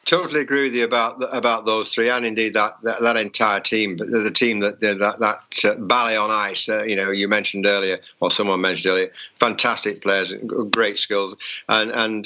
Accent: British